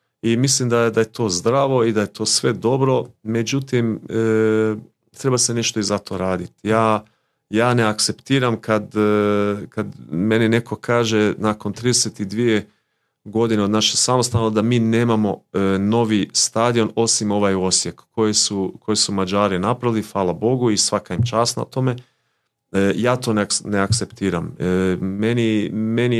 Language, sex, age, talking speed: Croatian, male, 40-59, 145 wpm